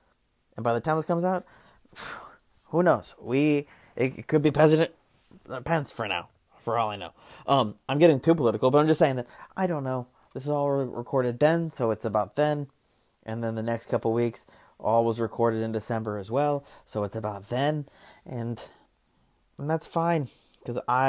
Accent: American